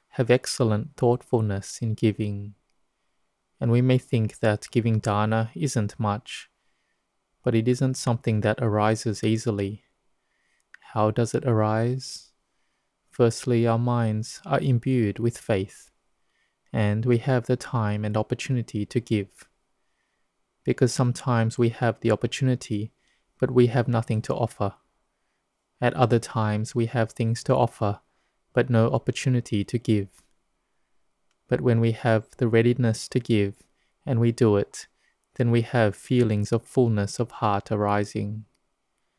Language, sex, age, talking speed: English, male, 20-39, 135 wpm